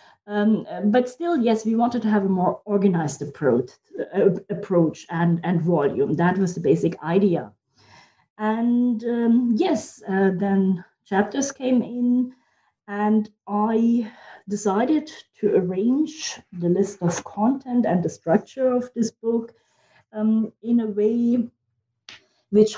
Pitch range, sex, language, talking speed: 185-230 Hz, female, English, 130 wpm